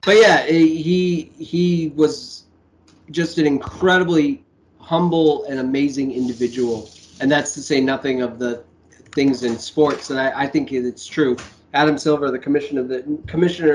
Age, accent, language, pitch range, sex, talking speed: 30-49, American, English, 130-160 Hz, male, 155 wpm